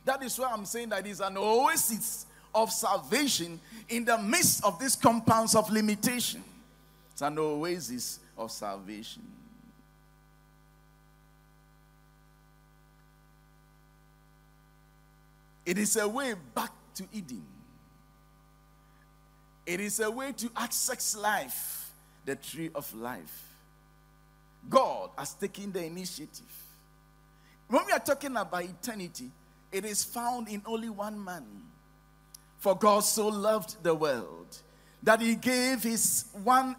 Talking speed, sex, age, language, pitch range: 115 wpm, male, 50-69, English, 195-245 Hz